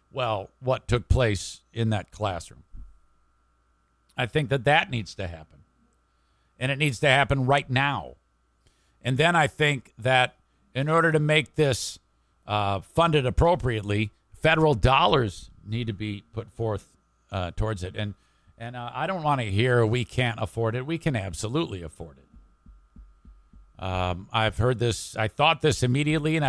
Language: English